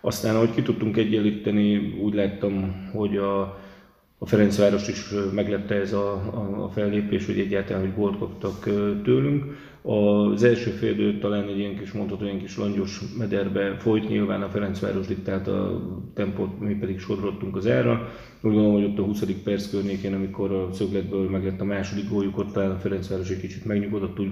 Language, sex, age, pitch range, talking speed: Hungarian, male, 30-49, 100-105 Hz, 175 wpm